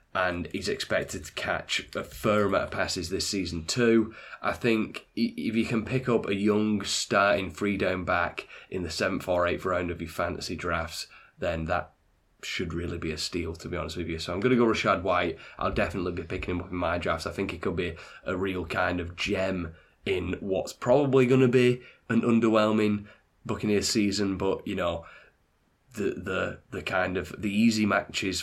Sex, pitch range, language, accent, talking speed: male, 90-120 Hz, English, British, 200 wpm